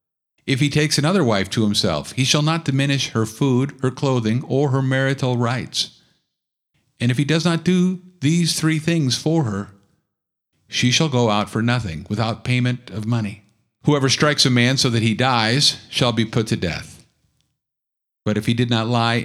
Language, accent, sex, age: English, American, male, 50-69